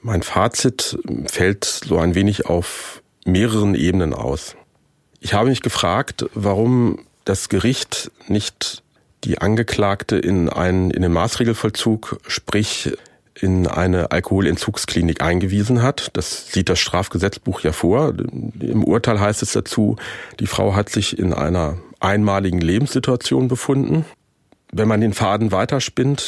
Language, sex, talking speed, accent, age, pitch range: German, male, 130 wpm, German, 40-59, 100-125 Hz